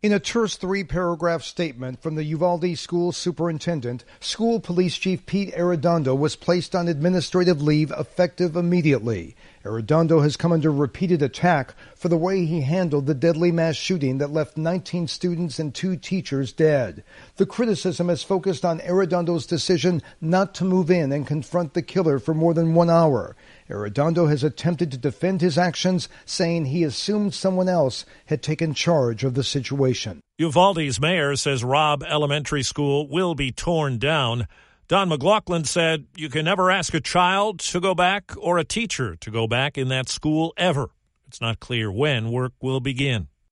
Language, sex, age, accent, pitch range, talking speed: English, male, 50-69, American, 145-180 Hz, 170 wpm